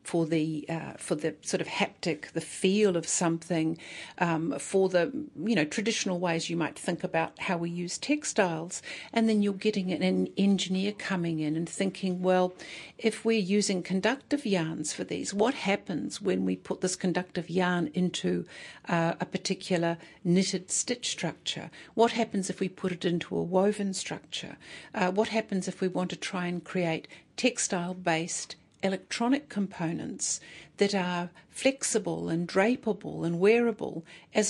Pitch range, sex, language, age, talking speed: 170-205 Hz, female, English, 60-79, 160 wpm